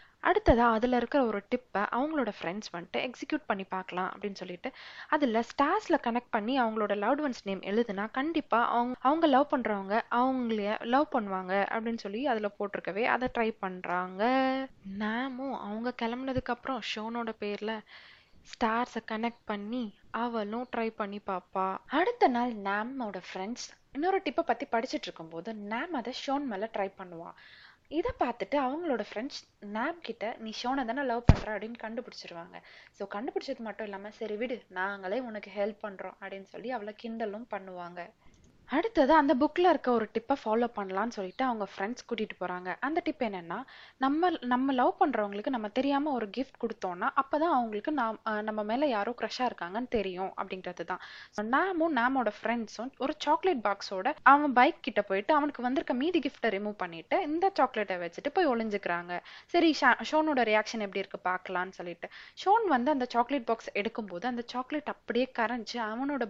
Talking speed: 145 wpm